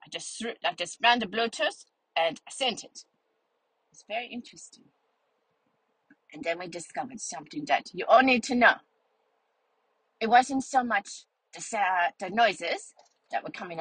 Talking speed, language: 150 wpm, English